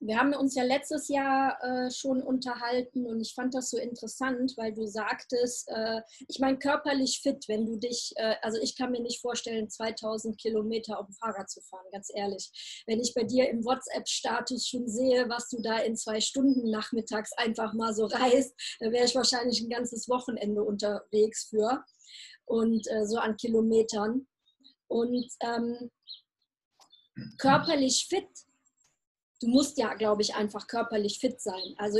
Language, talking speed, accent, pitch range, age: German, 165 wpm, German, 225-265 Hz, 20-39